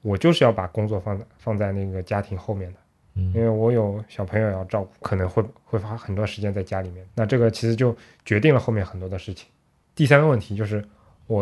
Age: 20-39